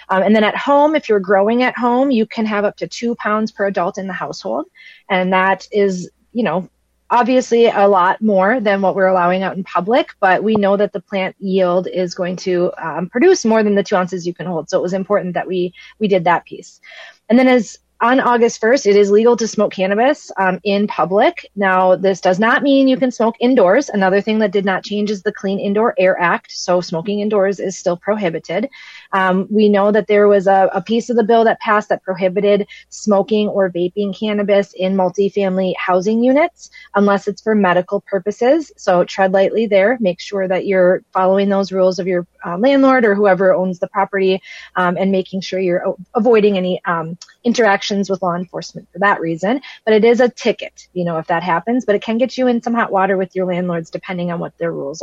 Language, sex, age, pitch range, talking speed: English, female, 30-49, 185-225 Hz, 220 wpm